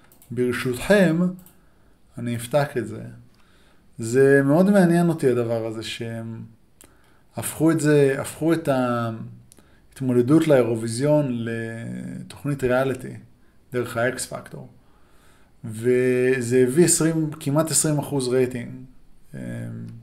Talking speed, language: 90 wpm, Hebrew